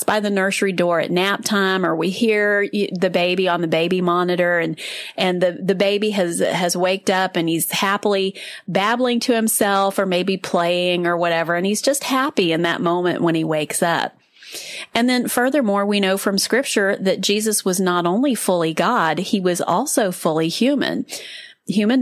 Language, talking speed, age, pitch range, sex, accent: English, 185 wpm, 30-49, 175-235 Hz, female, American